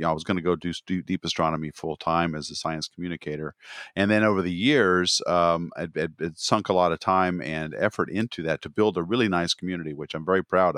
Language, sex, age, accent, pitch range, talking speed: English, male, 50-69, American, 80-95 Hz, 240 wpm